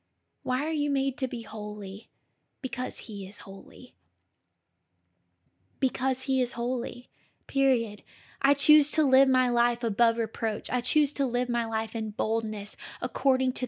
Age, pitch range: 10-29, 220-270 Hz